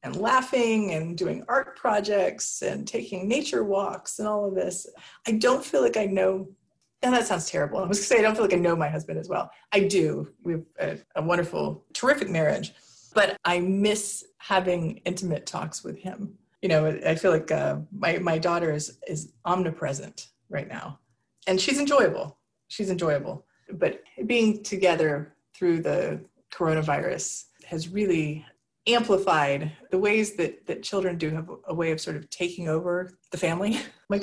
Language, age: English, 30-49